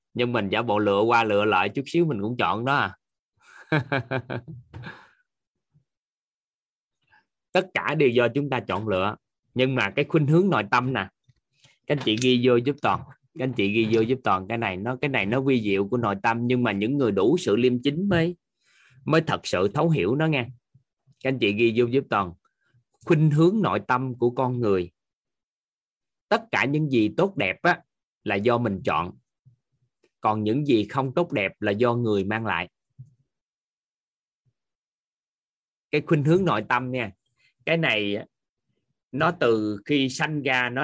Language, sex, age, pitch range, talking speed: Vietnamese, male, 20-39, 115-145 Hz, 180 wpm